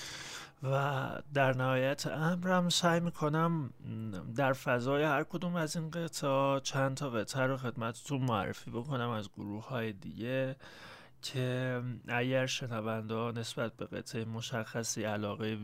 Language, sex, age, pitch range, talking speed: Persian, male, 30-49, 115-150 Hz, 125 wpm